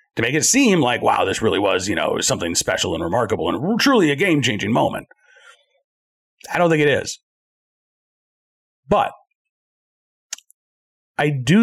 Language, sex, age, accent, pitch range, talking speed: English, male, 40-59, American, 115-195 Hz, 145 wpm